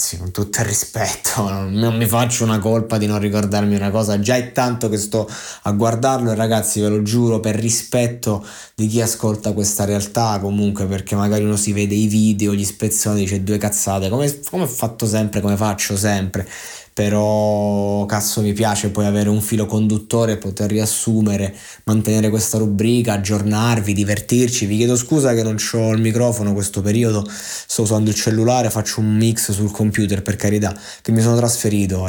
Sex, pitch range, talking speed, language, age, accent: male, 100-115 Hz, 180 wpm, Italian, 20-39, native